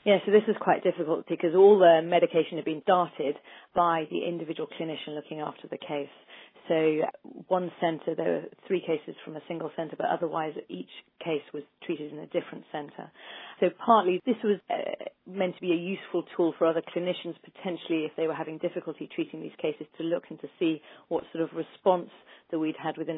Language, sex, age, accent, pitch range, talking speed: English, female, 40-59, British, 155-180 Hz, 195 wpm